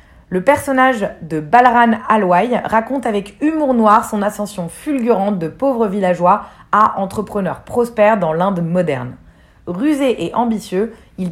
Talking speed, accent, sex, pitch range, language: 135 wpm, French, female, 185-240 Hz, French